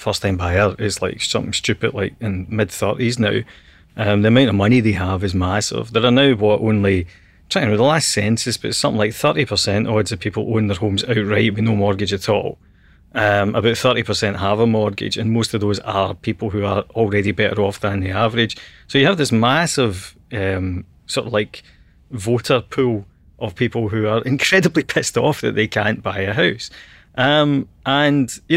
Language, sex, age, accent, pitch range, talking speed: English, male, 30-49, British, 105-125 Hz, 195 wpm